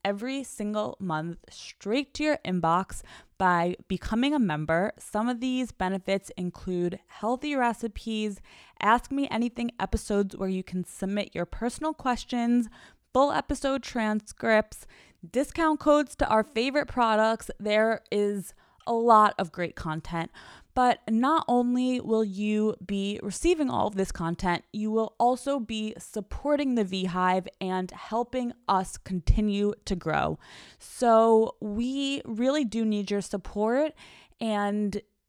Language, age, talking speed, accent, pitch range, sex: English, 20-39, 130 wpm, American, 195-240 Hz, female